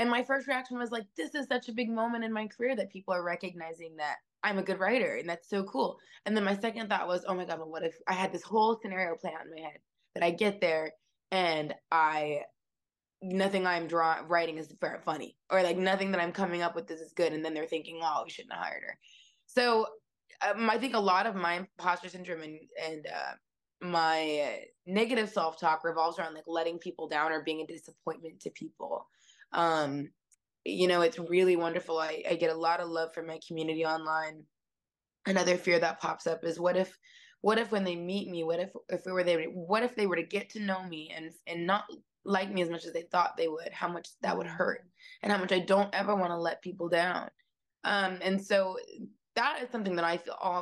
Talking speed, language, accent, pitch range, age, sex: 230 wpm, English, American, 165-200 Hz, 20-39, female